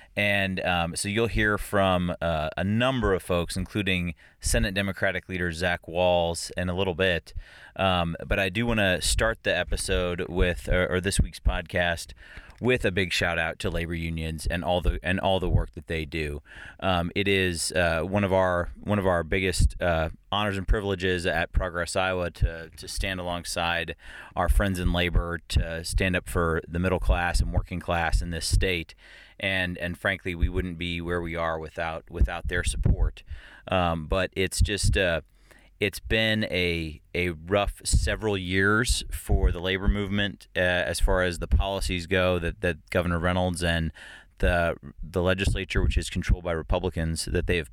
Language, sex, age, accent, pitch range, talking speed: English, male, 30-49, American, 85-95 Hz, 180 wpm